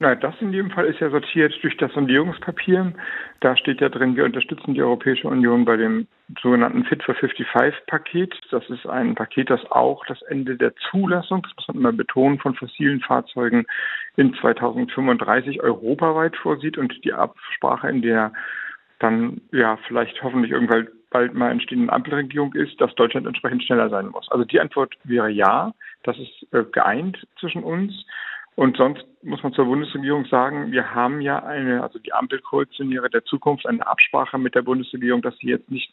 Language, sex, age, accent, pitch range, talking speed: German, male, 50-69, German, 120-165 Hz, 175 wpm